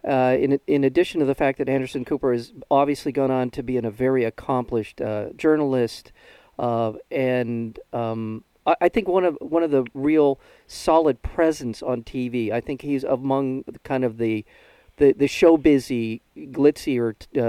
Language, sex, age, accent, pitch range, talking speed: English, male, 50-69, American, 115-145 Hz, 170 wpm